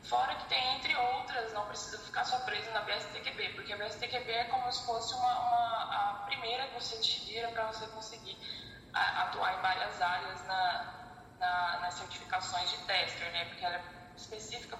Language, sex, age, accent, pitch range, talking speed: Portuguese, female, 10-29, Brazilian, 185-230 Hz, 180 wpm